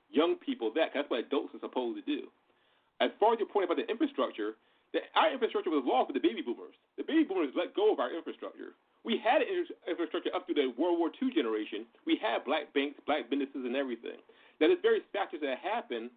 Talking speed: 210 wpm